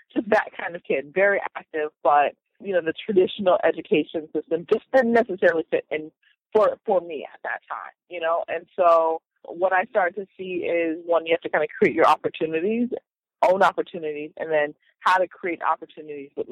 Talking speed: 195 wpm